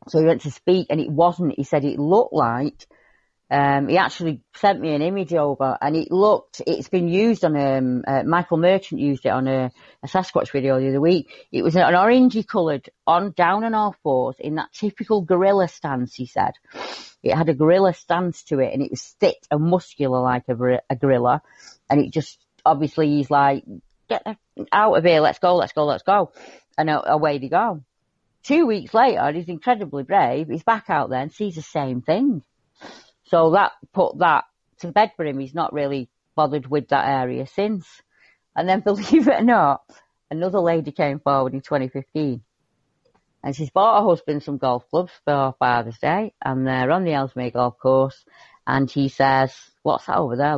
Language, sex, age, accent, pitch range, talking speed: English, female, 30-49, British, 135-180 Hz, 195 wpm